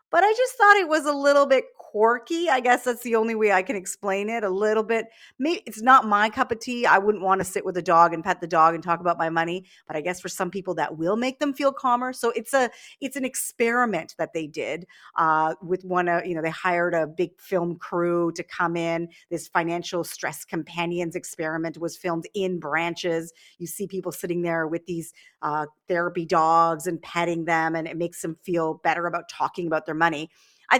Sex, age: female, 40-59